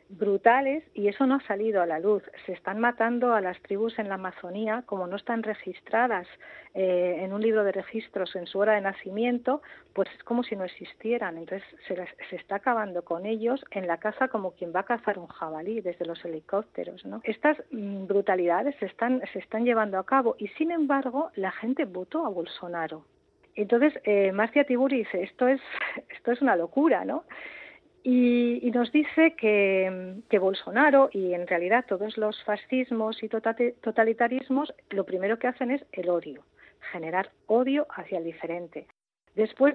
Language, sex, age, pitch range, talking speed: Spanish, female, 40-59, 185-245 Hz, 175 wpm